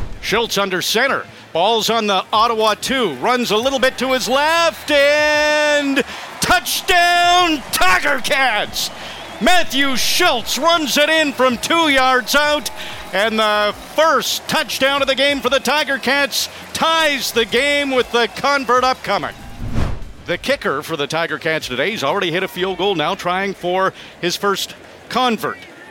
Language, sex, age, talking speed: English, male, 50-69, 150 wpm